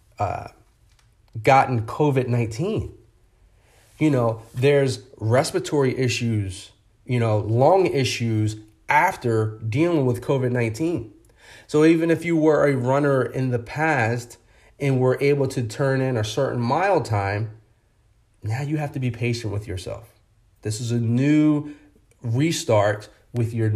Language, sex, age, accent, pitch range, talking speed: English, male, 30-49, American, 110-140 Hz, 130 wpm